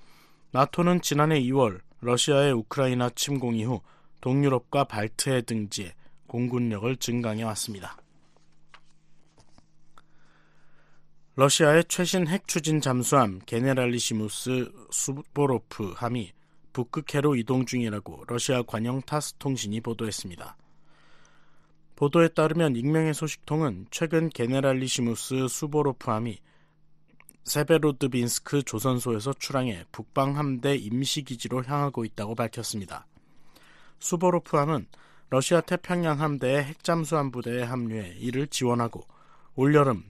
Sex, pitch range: male, 115-150 Hz